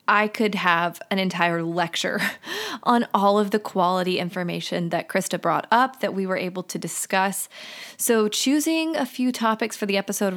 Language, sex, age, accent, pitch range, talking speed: English, female, 20-39, American, 185-220 Hz, 175 wpm